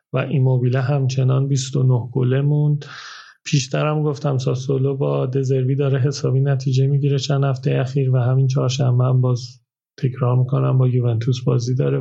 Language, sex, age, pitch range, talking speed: Persian, male, 30-49, 130-145 Hz, 145 wpm